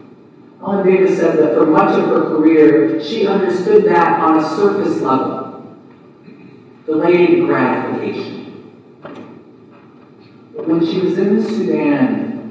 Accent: American